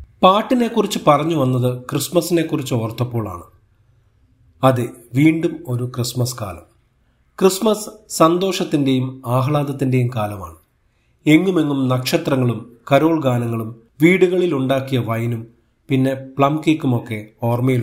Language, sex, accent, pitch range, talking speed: Malayalam, male, native, 120-155 Hz, 80 wpm